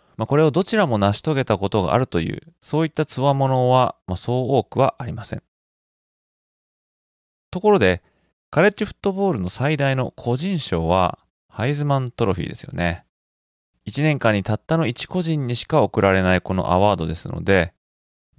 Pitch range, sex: 100-155 Hz, male